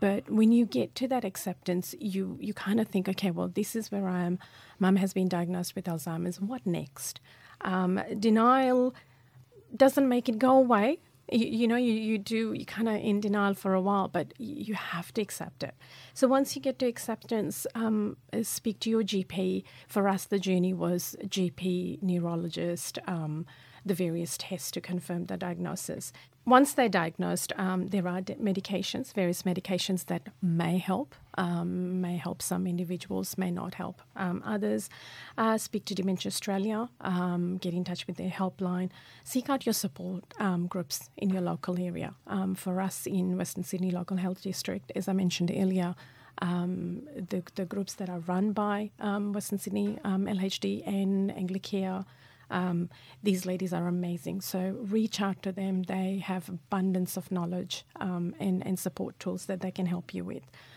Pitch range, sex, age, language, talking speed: 180-205 Hz, female, 40-59, English, 175 wpm